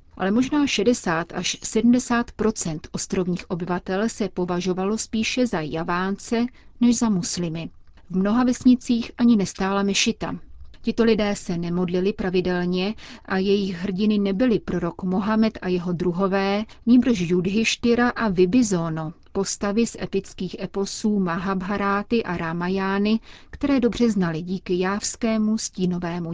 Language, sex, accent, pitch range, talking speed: Czech, female, native, 180-220 Hz, 120 wpm